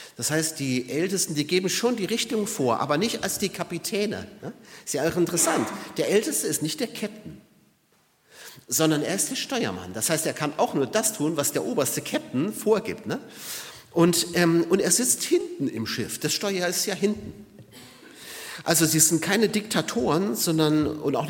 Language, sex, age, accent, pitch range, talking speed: German, male, 40-59, German, 125-200 Hz, 175 wpm